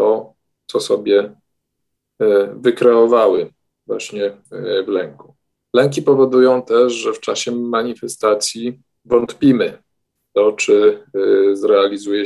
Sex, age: male, 40-59